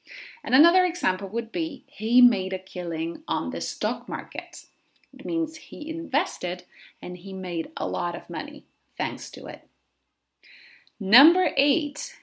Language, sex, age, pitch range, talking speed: English, female, 30-49, 185-285 Hz, 140 wpm